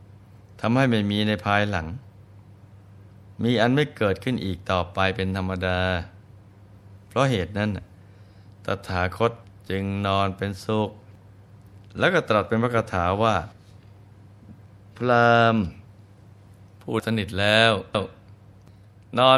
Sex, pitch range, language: male, 100-105 Hz, Thai